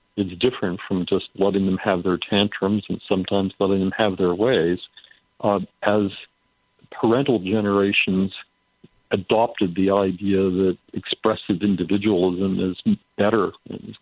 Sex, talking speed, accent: male, 125 wpm, American